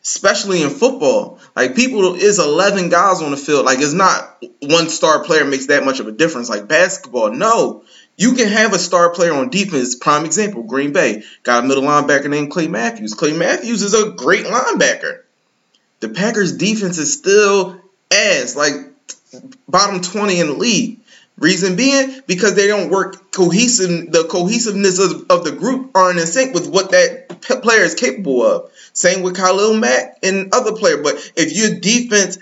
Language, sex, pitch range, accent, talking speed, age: English, male, 155-210 Hz, American, 180 wpm, 20-39